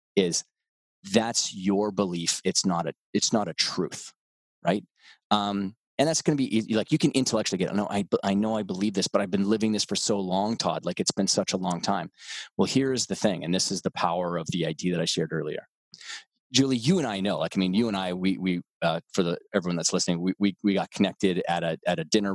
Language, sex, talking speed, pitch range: English, male, 250 wpm, 90-105 Hz